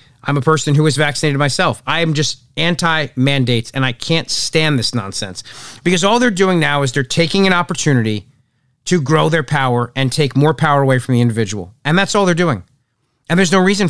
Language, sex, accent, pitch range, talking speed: English, male, American, 135-180 Hz, 205 wpm